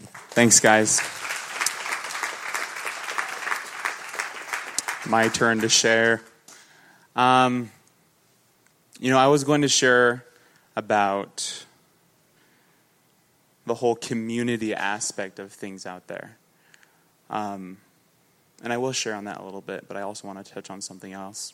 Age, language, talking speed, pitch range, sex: 20-39, English, 115 wpm, 105-130 Hz, male